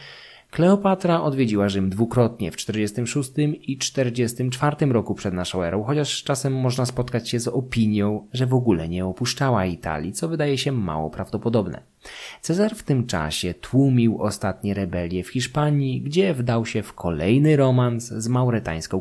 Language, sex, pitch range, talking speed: Polish, male, 100-130 Hz, 150 wpm